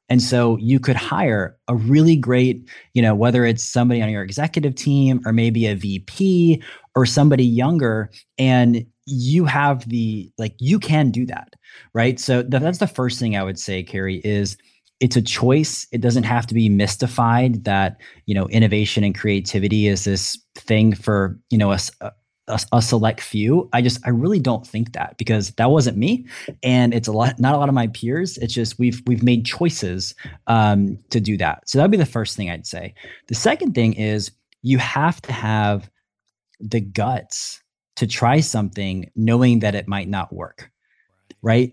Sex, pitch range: male, 105-130 Hz